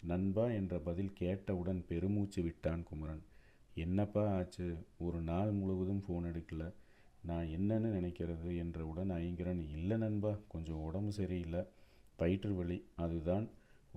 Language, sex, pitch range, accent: Tamil, male, 85-100 Hz, native